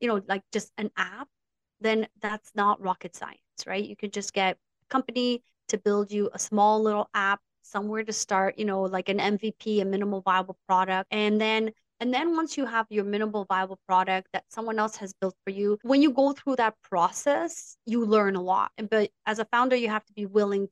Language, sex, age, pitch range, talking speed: English, female, 30-49, 195-225 Hz, 215 wpm